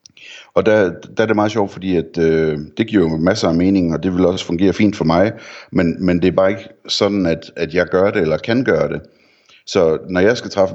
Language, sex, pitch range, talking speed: Danish, male, 80-100 Hz, 245 wpm